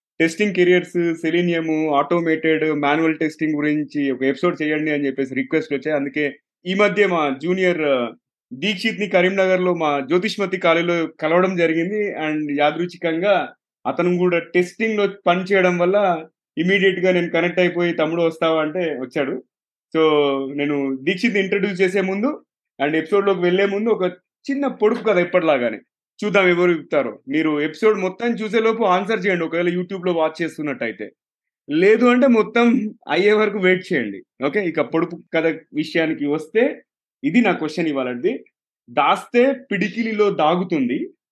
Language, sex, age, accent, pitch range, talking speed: Telugu, male, 30-49, native, 155-210 Hz, 130 wpm